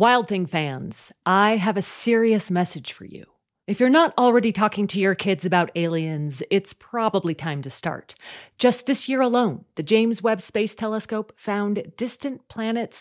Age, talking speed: 40-59, 170 wpm